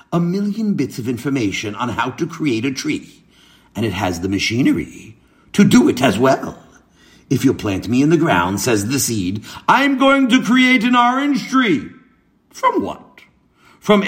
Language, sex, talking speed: English, male, 175 wpm